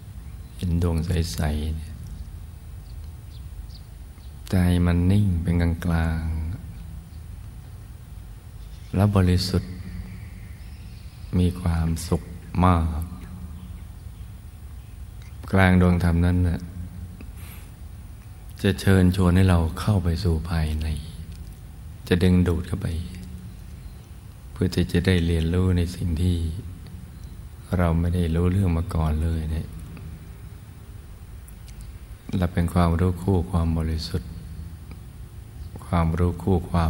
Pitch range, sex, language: 80-90 Hz, male, Thai